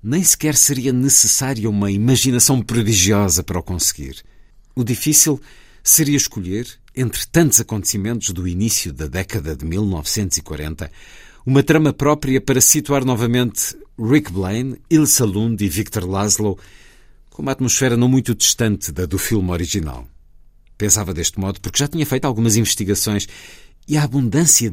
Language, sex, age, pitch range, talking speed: Portuguese, male, 50-69, 90-125 Hz, 140 wpm